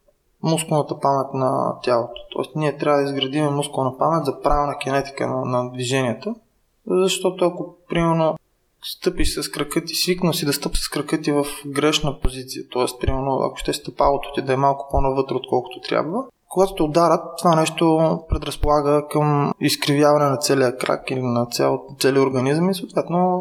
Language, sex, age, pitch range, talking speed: Bulgarian, male, 20-39, 135-165 Hz, 160 wpm